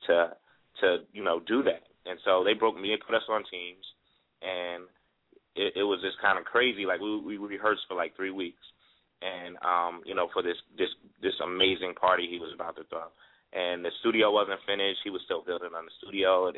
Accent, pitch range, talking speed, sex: American, 90-105 Hz, 215 wpm, male